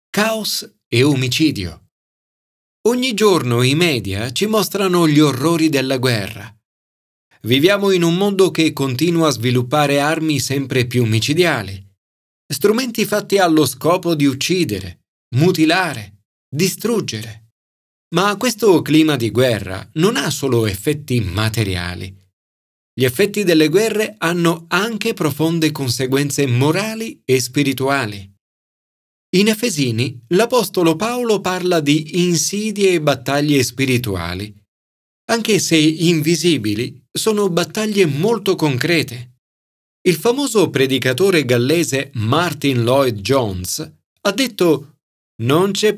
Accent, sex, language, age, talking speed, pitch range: native, male, Italian, 40-59, 105 wpm, 125-185 Hz